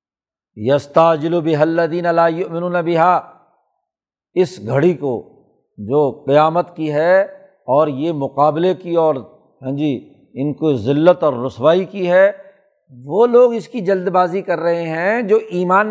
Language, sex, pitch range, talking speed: Urdu, male, 145-195 Hz, 145 wpm